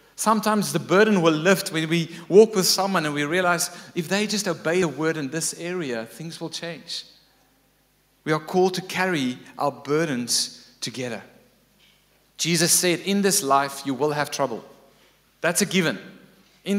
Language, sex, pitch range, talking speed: English, male, 135-175 Hz, 165 wpm